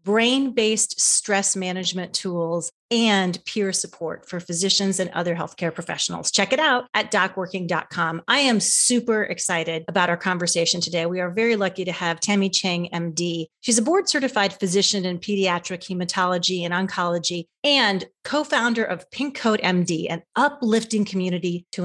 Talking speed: 150 wpm